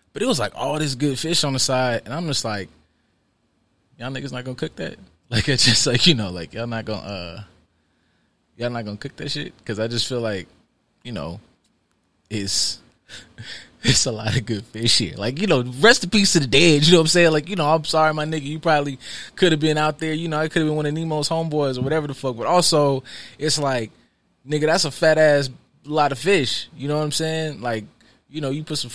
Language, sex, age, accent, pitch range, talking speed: English, male, 20-39, American, 110-160 Hz, 245 wpm